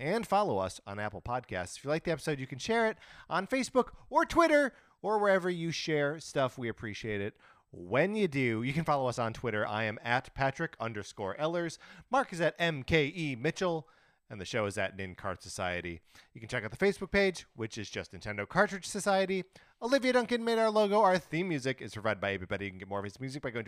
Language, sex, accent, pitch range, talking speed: English, male, American, 100-165 Hz, 225 wpm